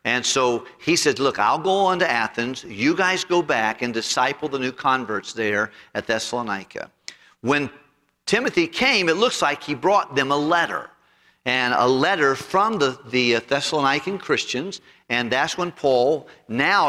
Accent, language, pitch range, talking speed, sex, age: American, English, 120-160 Hz, 165 wpm, male, 50-69